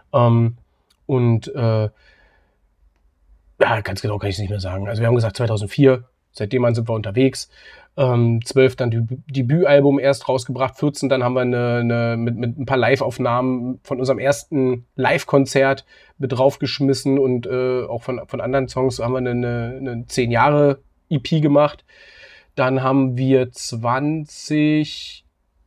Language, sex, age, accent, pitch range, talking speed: German, male, 30-49, German, 120-145 Hz, 145 wpm